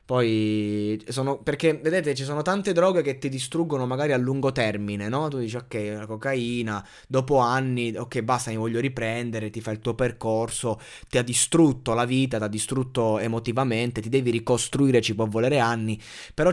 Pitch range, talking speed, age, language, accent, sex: 115-140 Hz, 180 wpm, 20-39, Italian, native, male